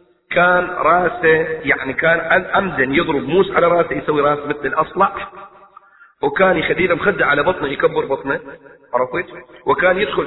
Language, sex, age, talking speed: Arabic, male, 40-59, 140 wpm